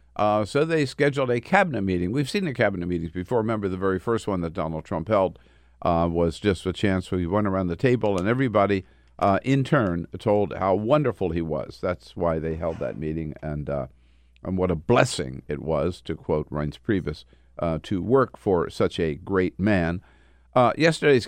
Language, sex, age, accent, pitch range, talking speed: English, male, 50-69, American, 80-120 Hz, 195 wpm